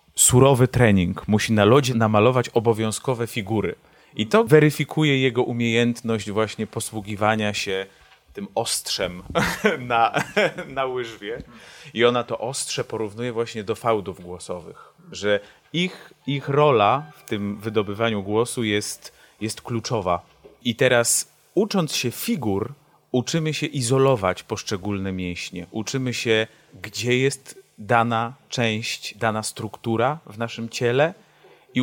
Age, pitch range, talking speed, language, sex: 30-49, 105-130 Hz, 120 wpm, Polish, male